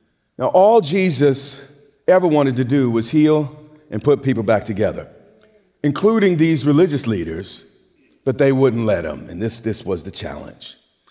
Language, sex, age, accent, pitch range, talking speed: English, male, 40-59, American, 115-145 Hz, 155 wpm